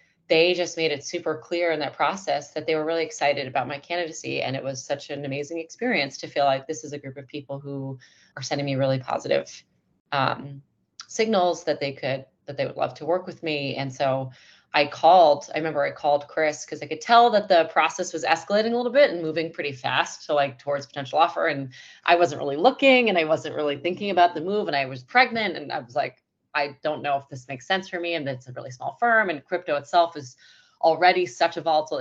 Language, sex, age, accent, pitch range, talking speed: English, female, 30-49, American, 140-170 Hz, 230 wpm